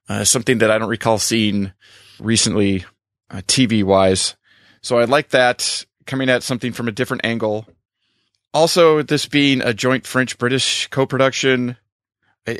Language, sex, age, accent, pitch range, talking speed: English, male, 30-49, American, 110-135 Hz, 140 wpm